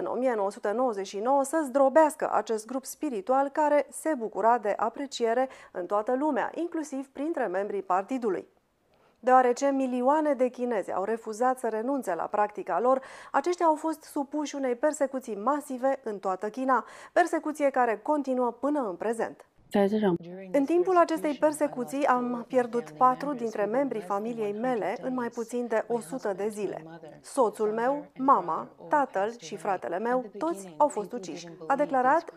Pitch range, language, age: 220-275 Hz, Romanian, 30-49